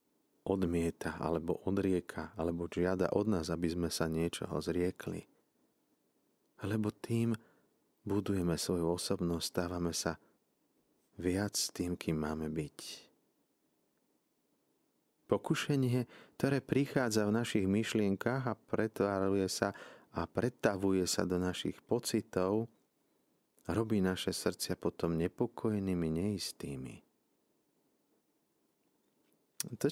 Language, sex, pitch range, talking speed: Slovak, male, 85-100 Hz, 90 wpm